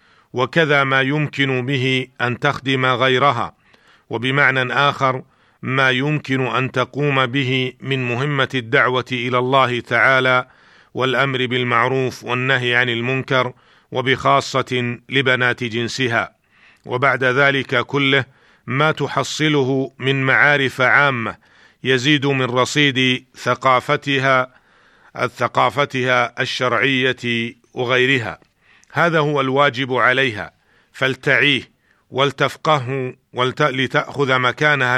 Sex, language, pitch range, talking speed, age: male, Arabic, 125-140 Hz, 85 wpm, 50-69